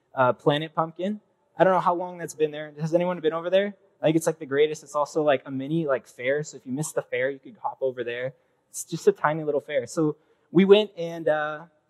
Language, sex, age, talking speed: English, male, 20-39, 255 wpm